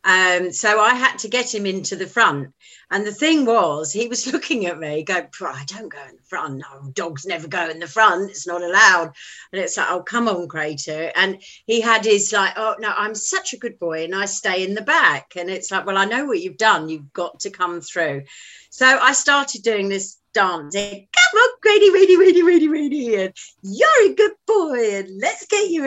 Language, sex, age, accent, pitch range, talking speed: English, female, 40-59, British, 170-230 Hz, 225 wpm